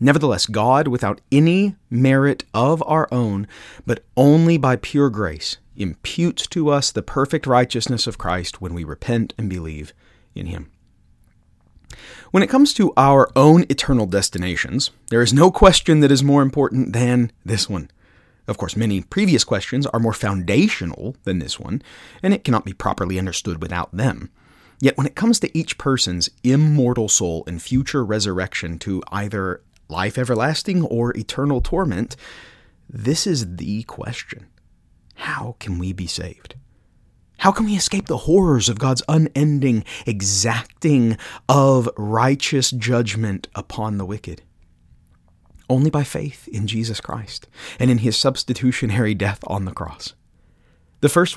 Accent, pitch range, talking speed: American, 100-140 Hz, 145 wpm